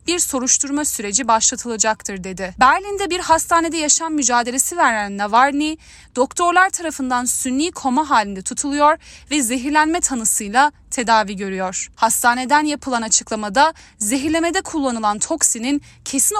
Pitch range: 220-300 Hz